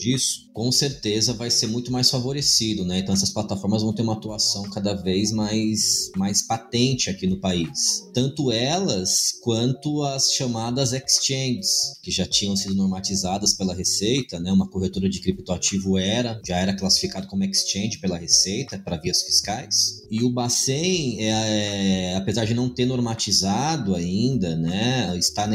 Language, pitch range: Portuguese, 95-125 Hz